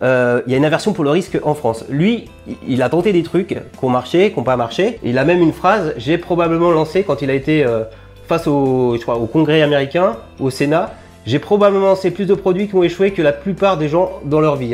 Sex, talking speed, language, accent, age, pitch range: male, 255 wpm, French, French, 30-49, 135-190 Hz